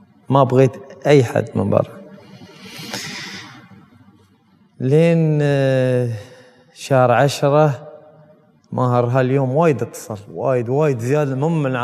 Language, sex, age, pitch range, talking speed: English, male, 20-39, 120-150 Hz, 90 wpm